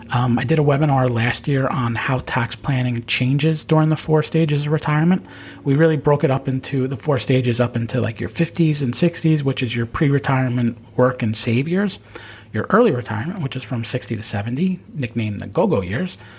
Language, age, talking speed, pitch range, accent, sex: English, 40-59, 200 wpm, 115-150 Hz, American, male